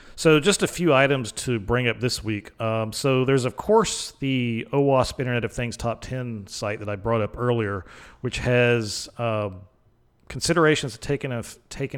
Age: 40-59